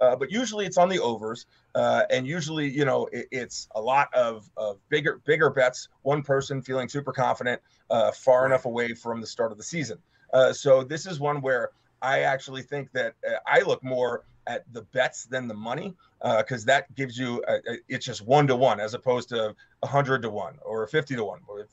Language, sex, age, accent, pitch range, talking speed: English, male, 30-49, American, 120-145 Hz, 215 wpm